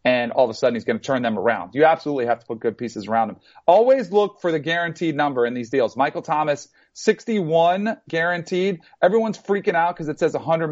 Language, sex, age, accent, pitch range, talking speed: English, male, 40-59, American, 130-170 Hz, 225 wpm